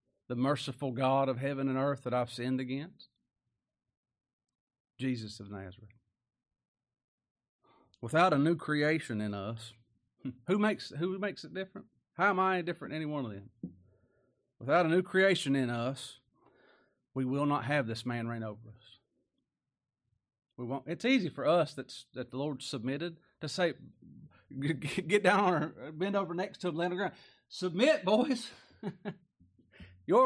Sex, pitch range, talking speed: male, 120-200 Hz, 160 wpm